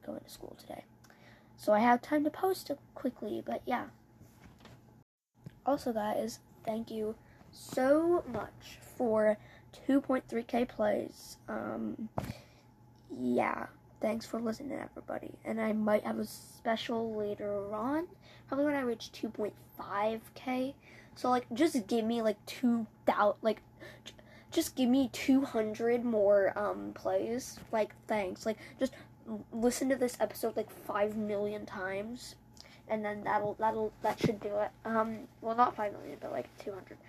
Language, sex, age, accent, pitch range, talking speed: English, female, 10-29, American, 205-245 Hz, 140 wpm